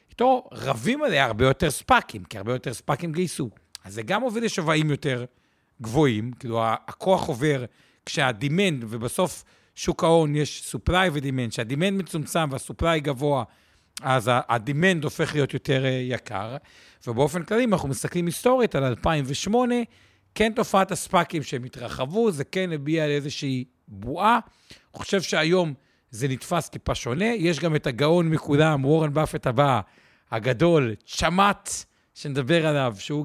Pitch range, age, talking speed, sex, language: 130-170 Hz, 50-69, 135 wpm, male, Hebrew